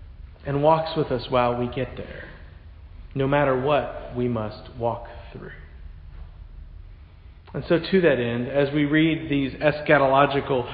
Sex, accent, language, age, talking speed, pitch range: male, American, English, 40-59, 140 wpm, 105-155 Hz